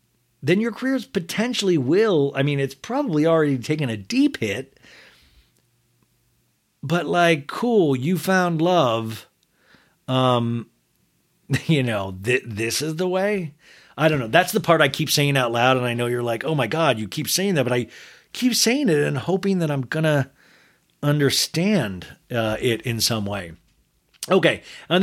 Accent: American